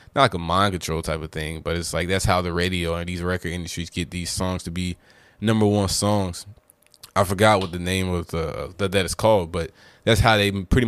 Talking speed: 230 wpm